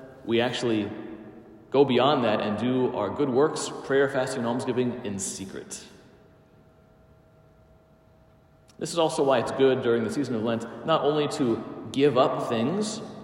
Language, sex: English, male